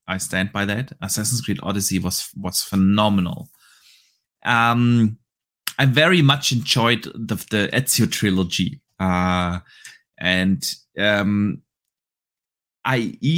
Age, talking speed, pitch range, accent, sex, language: 30-49, 105 wpm, 105-140 Hz, German, male, English